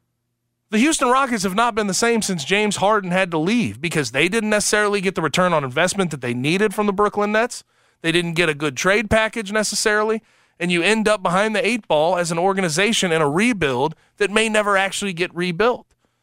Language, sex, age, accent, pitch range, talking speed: English, male, 30-49, American, 155-205 Hz, 215 wpm